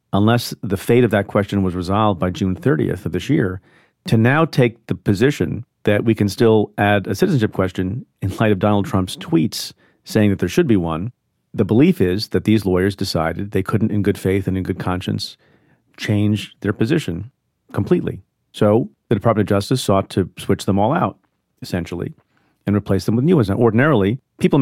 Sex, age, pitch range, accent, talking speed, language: male, 40-59, 95-120 Hz, American, 195 wpm, English